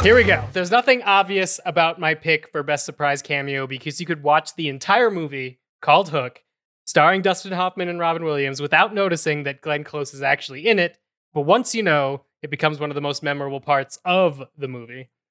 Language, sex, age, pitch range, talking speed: English, male, 20-39, 140-175 Hz, 205 wpm